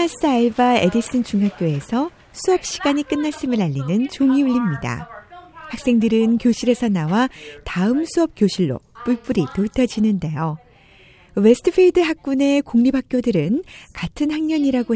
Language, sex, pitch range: Korean, female, 190-275 Hz